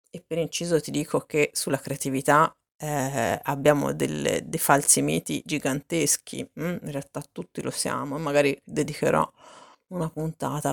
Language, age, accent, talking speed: Italian, 30-49, native, 145 wpm